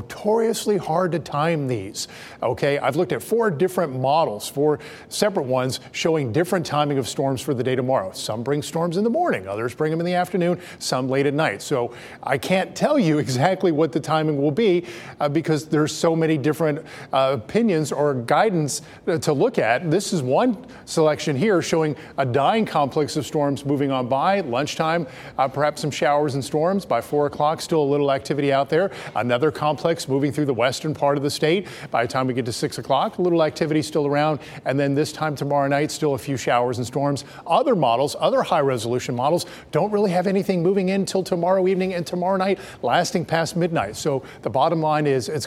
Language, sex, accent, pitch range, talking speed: English, male, American, 135-170 Hz, 205 wpm